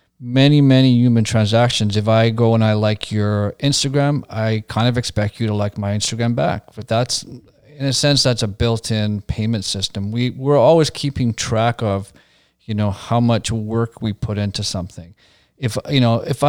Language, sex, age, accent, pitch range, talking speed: English, male, 40-59, American, 105-130 Hz, 190 wpm